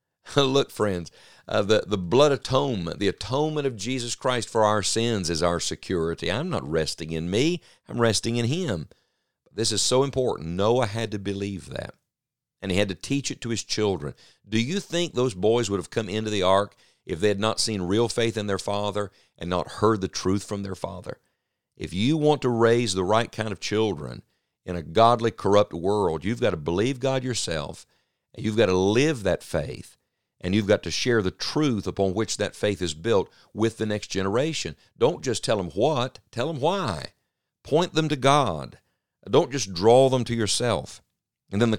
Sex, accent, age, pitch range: male, American, 50-69, 95-120 Hz